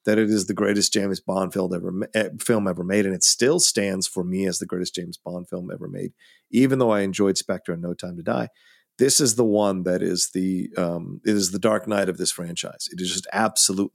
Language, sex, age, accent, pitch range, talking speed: English, male, 40-59, American, 95-120 Hz, 240 wpm